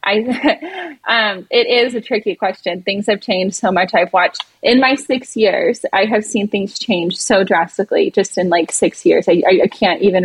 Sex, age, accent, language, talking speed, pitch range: female, 20-39, American, English, 200 wpm, 185-220 Hz